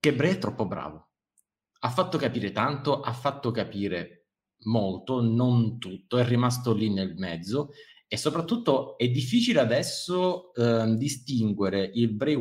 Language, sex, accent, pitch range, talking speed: Italian, male, native, 105-130 Hz, 140 wpm